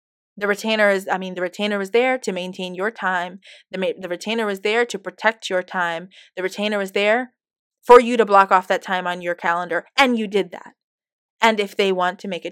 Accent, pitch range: American, 185-240 Hz